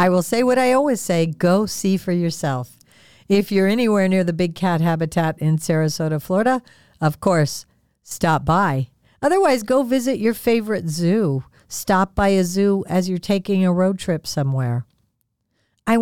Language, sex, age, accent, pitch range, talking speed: English, female, 50-69, American, 155-215 Hz, 165 wpm